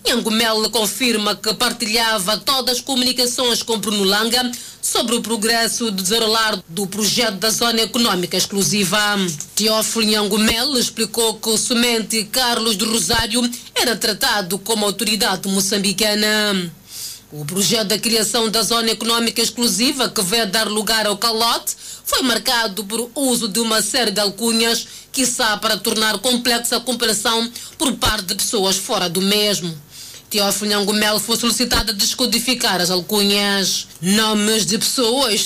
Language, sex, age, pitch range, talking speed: Portuguese, female, 30-49, 205-230 Hz, 140 wpm